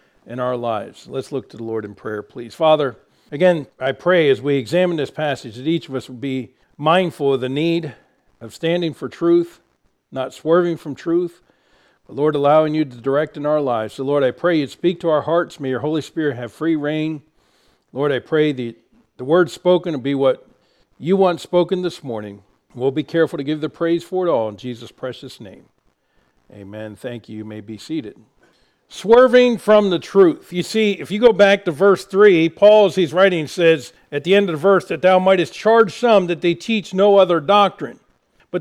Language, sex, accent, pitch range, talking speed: English, male, American, 145-200 Hz, 210 wpm